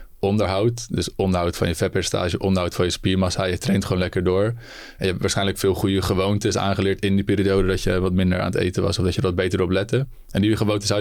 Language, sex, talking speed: Dutch, male, 250 wpm